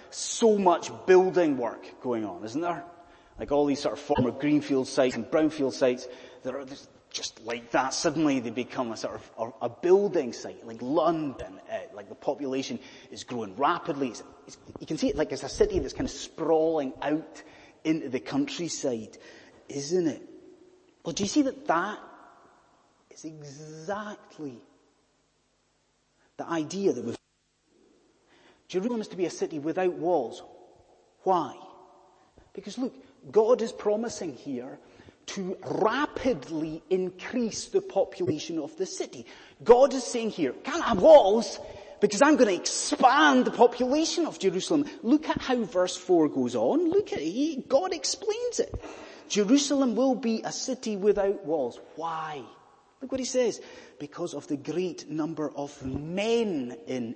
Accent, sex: British, male